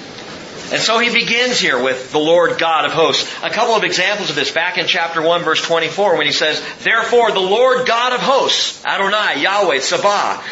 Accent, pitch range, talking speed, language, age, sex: American, 160-225 Hz, 200 wpm, English, 40-59, male